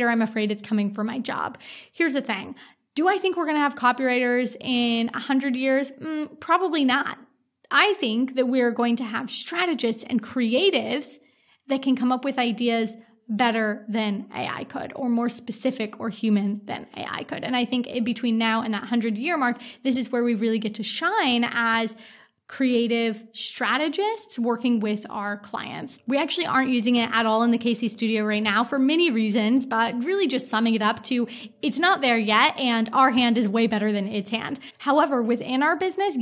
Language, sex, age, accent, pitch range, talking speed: English, female, 20-39, American, 225-265 Hz, 190 wpm